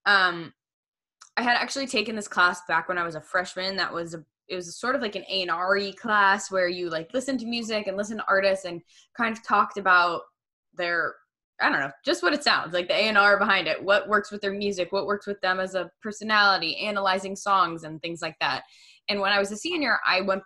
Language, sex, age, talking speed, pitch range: English, female, 10-29, 240 wpm, 180-225 Hz